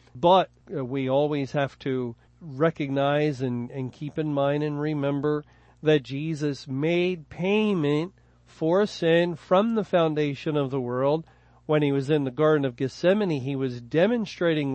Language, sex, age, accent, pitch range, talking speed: English, male, 50-69, American, 135-165 Hz, 145 wpm